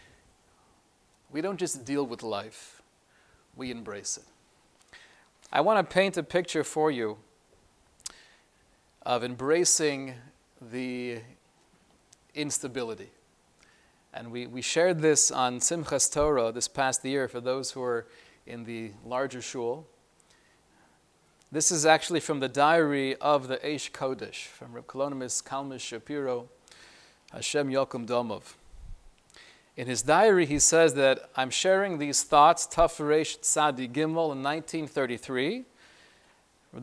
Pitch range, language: 130-165 Hz, English